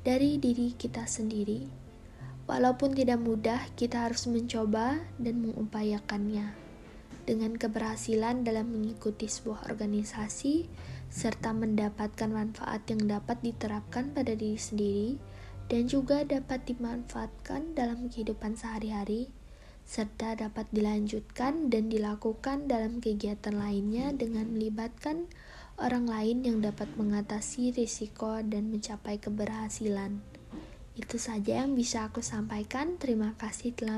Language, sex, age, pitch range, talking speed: Indonesian, female, 20-39, 215-245 Hz, 110 wpm